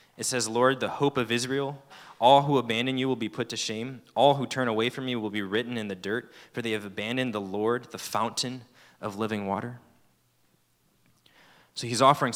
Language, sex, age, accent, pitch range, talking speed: English, male, 20-39, American, 105-120 Hz, 205 wpm